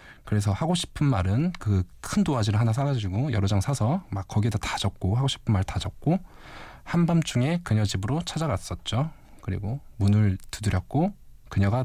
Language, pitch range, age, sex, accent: Korean, 95-125 Hz, 20-39, male, native